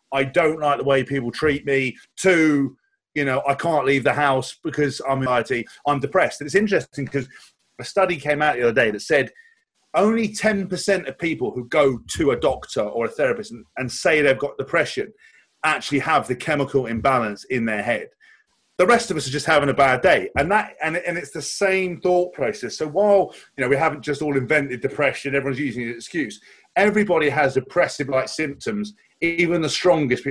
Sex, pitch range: male, 130-175 Hz